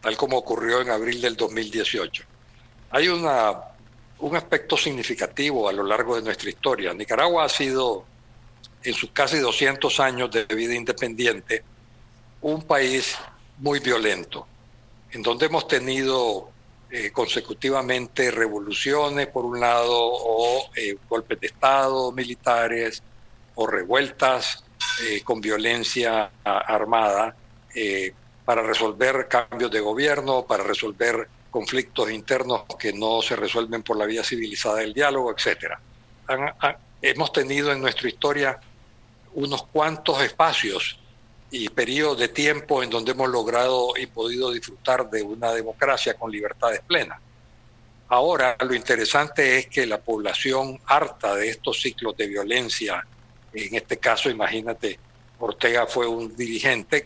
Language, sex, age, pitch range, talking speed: Spanish, male, 60-79, 115-130 Hz, 130 wpm